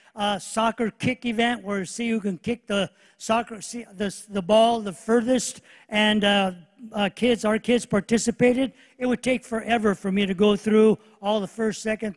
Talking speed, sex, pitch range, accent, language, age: 180 wpm, male, 205-235 Hz, American, English, 50-69